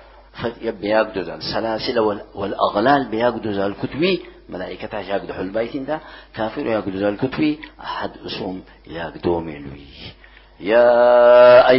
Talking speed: 95 wpm